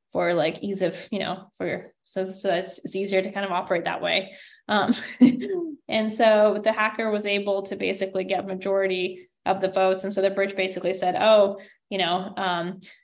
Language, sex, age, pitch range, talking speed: English, female, 10-29, 190-225 Hz, 195 wpm